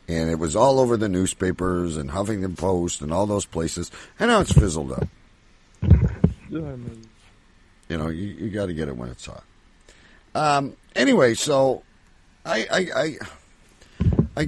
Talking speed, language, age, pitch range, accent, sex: 150 wpm, English, 50-69, 80-110 Hz, American, male